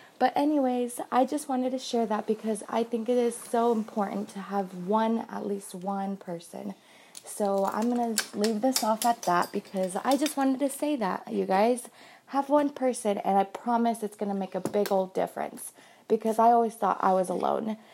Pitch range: 190-235 Hz